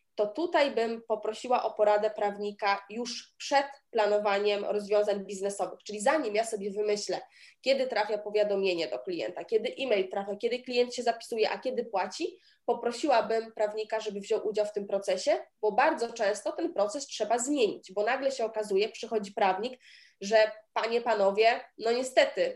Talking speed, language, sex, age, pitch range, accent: 155 wpm, Polish, female, 20-39, 210-245 Hz, native